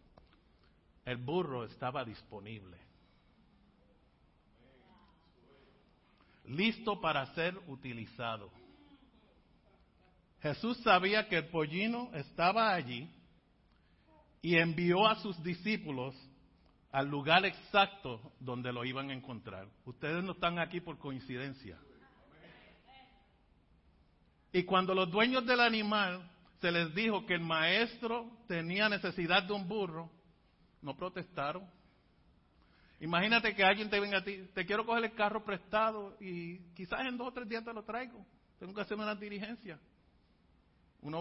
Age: 60-79